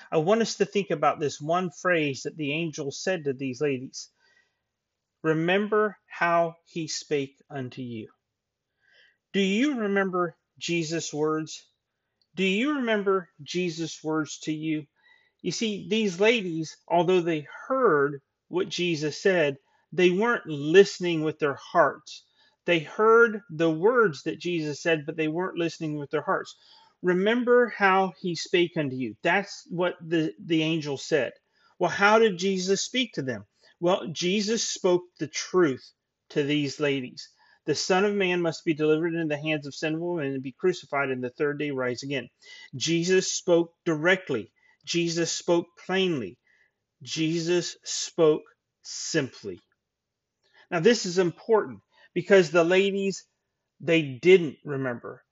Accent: American